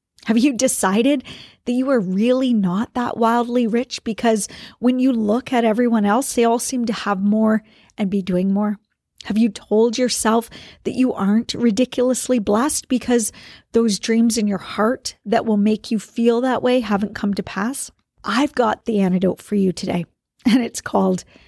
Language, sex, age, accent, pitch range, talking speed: English, female, 40-59, American, 200-235 Hz, 180 wpm